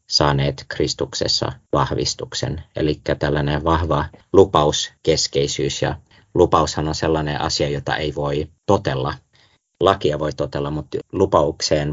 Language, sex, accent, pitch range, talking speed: Finnish, male, native, 70-80 Hz, 110 wpm